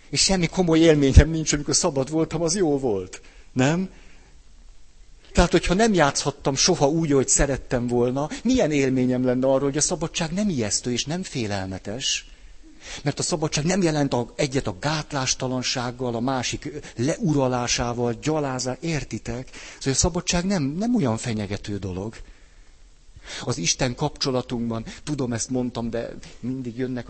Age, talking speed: 60-79, 140 wpm